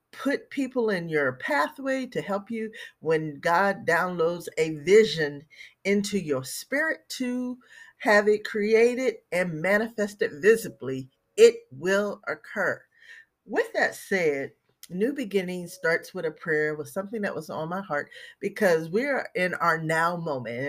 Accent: American